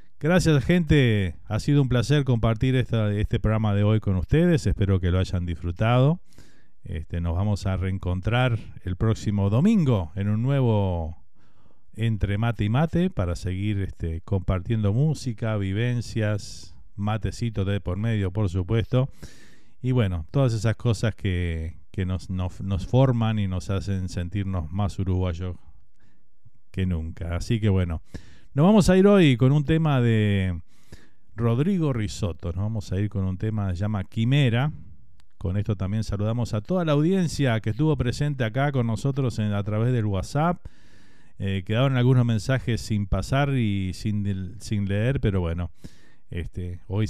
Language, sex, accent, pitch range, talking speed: Spanish, male, Argentinian, 95-120 Hz, 150 wpm